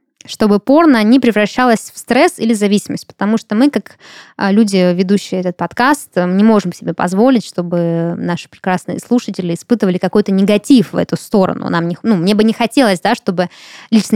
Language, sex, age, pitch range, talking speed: Russian, female, 20-39, 180-220 Hz, 170 wpm